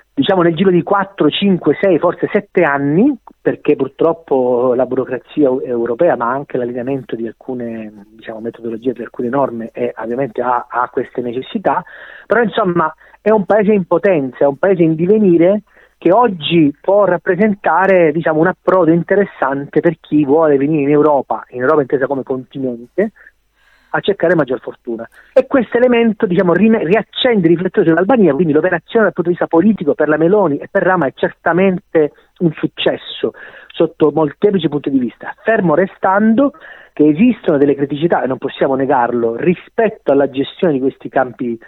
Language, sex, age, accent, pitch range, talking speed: Italian, male, 30-49, native, 135-190 Hz, 165 wpm